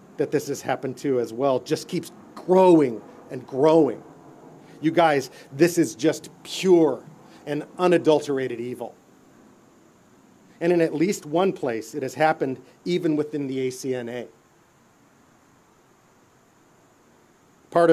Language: English